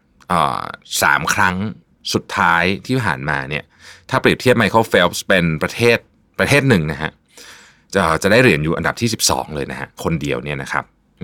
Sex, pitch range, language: male, 75-105 Hz, Thai